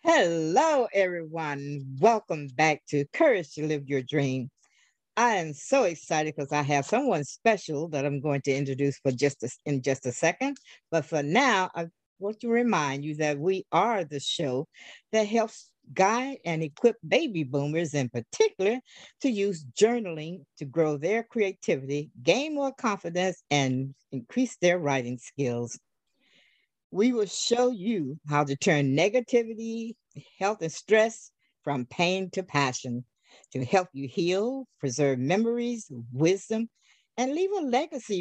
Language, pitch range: English, 145-220 Hz